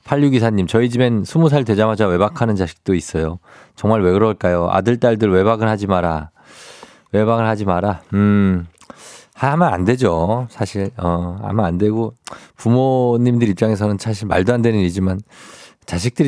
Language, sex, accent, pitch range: Korean, male, native, 95-120 Hz